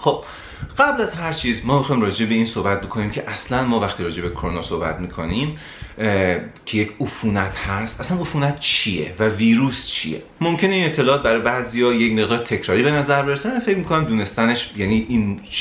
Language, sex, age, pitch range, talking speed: Persian, male, 30-49, 100-140 Hz, 185 wpm